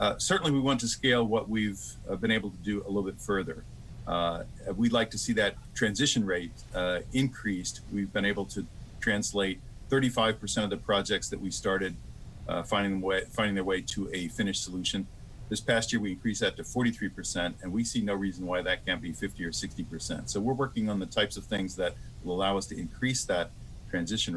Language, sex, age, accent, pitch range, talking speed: English, male, 40-59, American, 95-115 Hz, 210 wpm